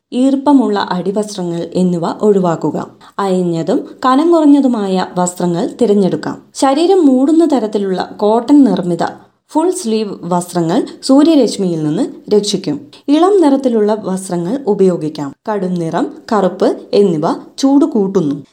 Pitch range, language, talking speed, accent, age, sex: 185-275 Hz, Malayalam, 95 wpm, native, 20-39, female